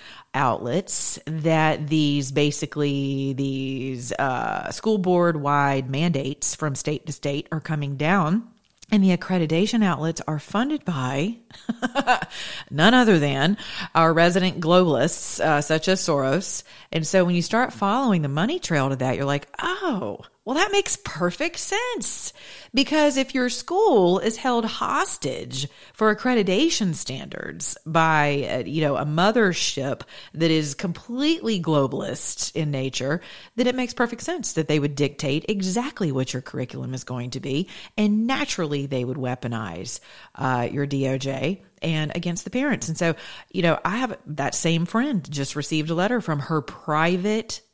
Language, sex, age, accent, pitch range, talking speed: English, female, 40-59, American, 145-215 Hz, 150 wpm